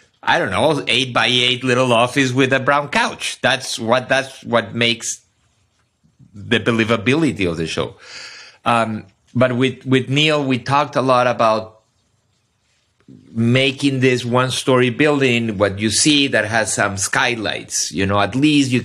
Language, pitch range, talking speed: English, 110-140 Hz, 155 wpm